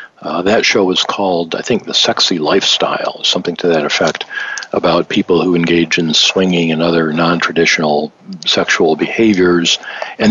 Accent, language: American, English